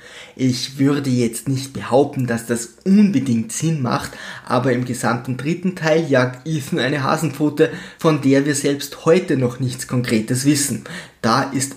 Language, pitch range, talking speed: German, 125-160 Hz, 155 wpm